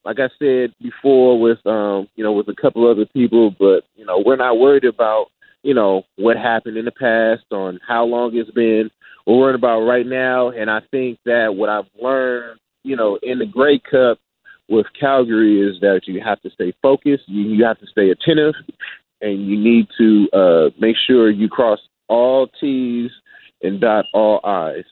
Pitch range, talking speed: 105-135 Hz, 190 wpm